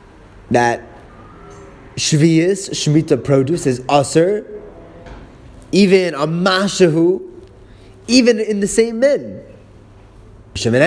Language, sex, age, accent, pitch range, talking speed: English, male, 30-49, American, 105-175 Hz, 75 wpm